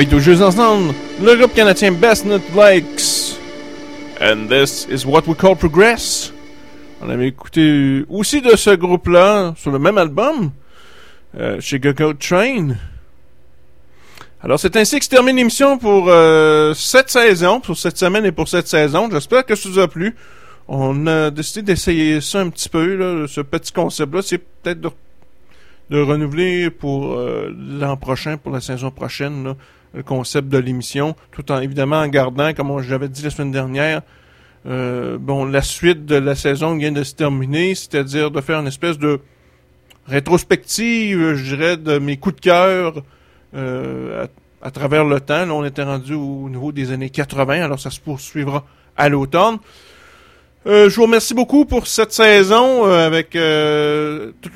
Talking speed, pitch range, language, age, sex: 165 wpm, 140-185 Hz, French, 30-49, male